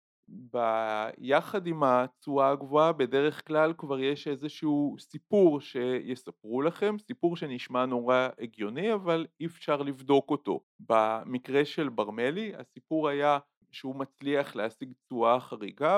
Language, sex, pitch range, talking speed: Hebrew, male, 115-150 Hz, 115 wpm